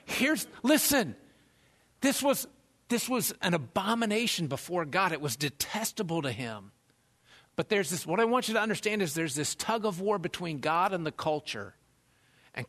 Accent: American